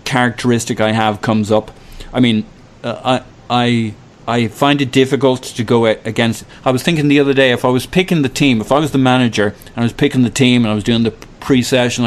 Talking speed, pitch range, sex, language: 230 wpm, 110-135 Hz, male, English